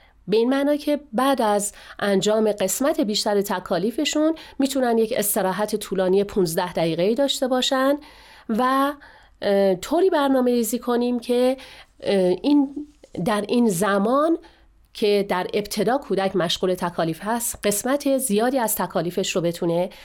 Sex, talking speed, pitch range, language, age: female, 115 wpm, 190-265 Hz, Persian, 40-59